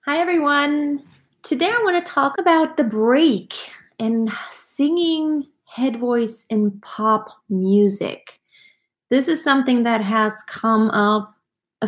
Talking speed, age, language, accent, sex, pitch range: 125 wpm, 30-49, English, American, female, 210-255 Hz